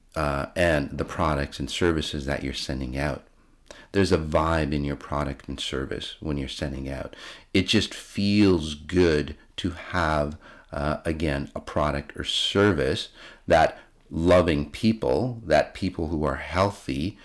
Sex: male